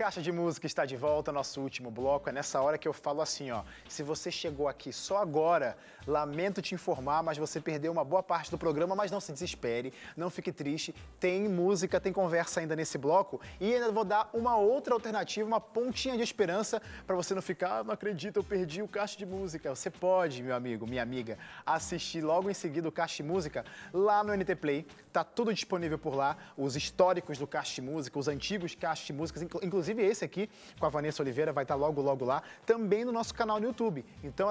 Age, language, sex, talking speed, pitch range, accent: 20-39, Portuguese, male, 215 wpm, 150-195 Hz, Brazilian